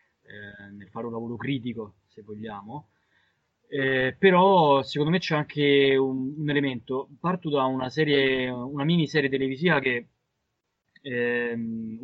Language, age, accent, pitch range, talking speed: Italian, 20-39, native, 120-145 Hz, 130 wpm